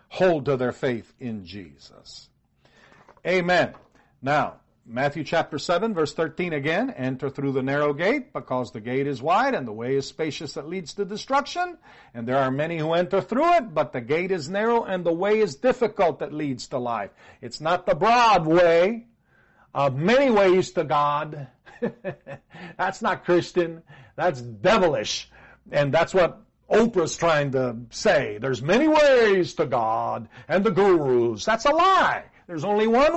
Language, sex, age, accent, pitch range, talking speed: English, male, 50-69, American, 140-220 Hz, 165 wpm